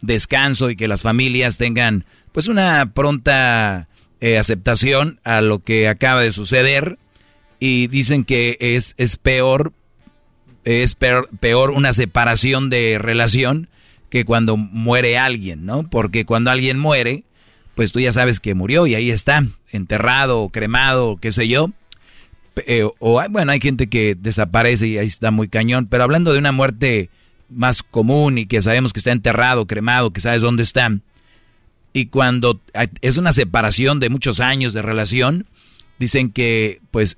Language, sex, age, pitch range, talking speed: Spanish, male, 40-59, 110-130 Hz, 155 wpm